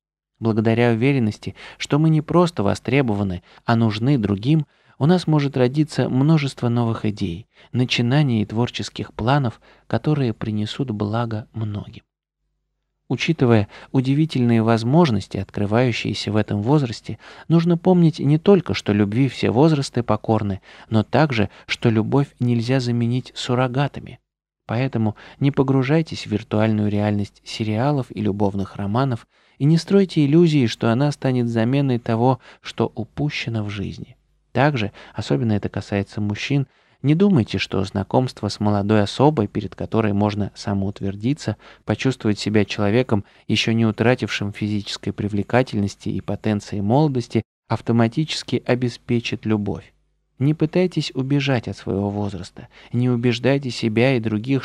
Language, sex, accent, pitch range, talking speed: Russian, male, native, 105-135 Hz, 125 wpm